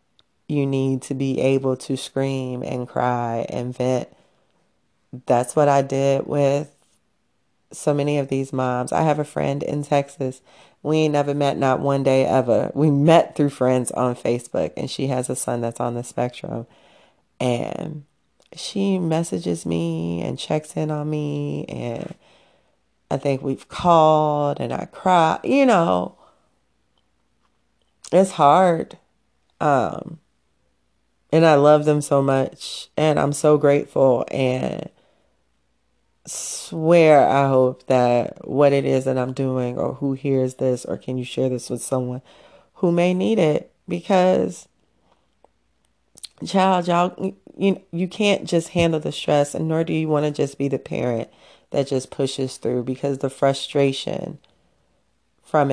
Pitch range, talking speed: 130-155 Hz, 145 wpm